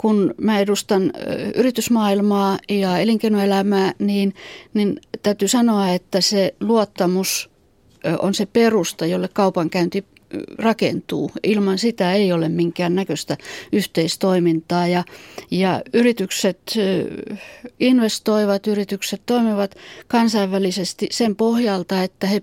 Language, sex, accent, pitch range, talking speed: Finnish, female, native, 185-215 Hz, 100 wpm